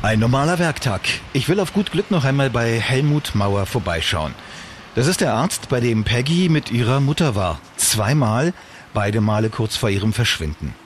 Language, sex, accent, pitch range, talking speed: German, male, German, 105-145 Hz, 175 wpm